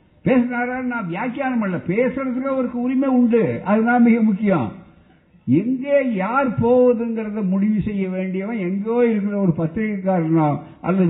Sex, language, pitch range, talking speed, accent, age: male, Tamil, 170-235 Hz, 115 wpm, native, 60-79